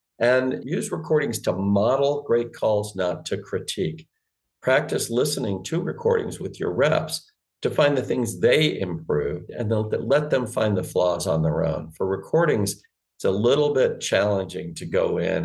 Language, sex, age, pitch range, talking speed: English, male, 50-69, 90-155 Hz, 165 wpm